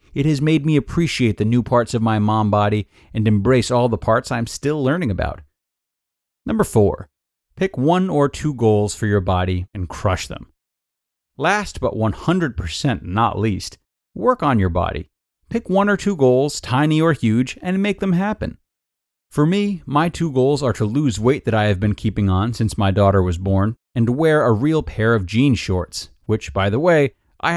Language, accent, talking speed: English, American, 190 wpm